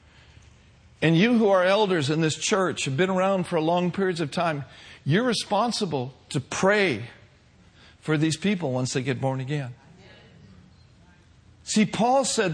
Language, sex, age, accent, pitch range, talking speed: English, male, 50-69, American, 130-190 Hz, 150 wpm